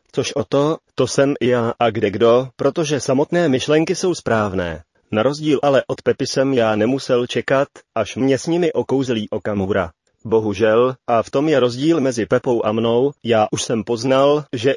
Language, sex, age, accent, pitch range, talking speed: Czech, male, 30-49, native, 115-135 Hz, 185 wpm